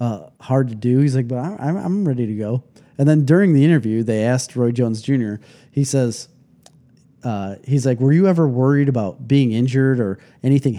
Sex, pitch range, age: male, 120-160 Hz, 30-49